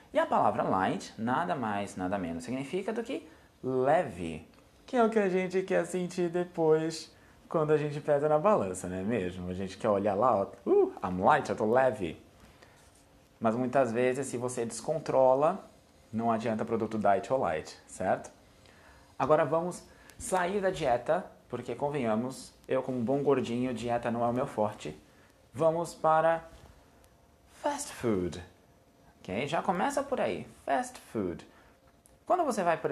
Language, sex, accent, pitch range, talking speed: Portuguese, male, Brazilian, 110-160 Hz, 155 wpm